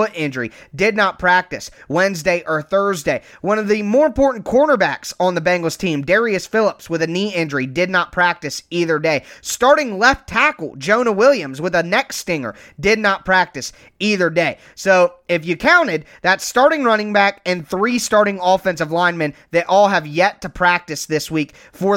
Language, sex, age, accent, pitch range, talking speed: English, male, 20-39, American, 165-205 Hz, 175 wpm